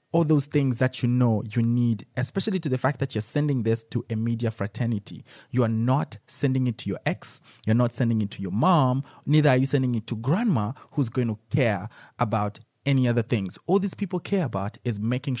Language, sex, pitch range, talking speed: English, male, 115-145 Hz, 220 wpm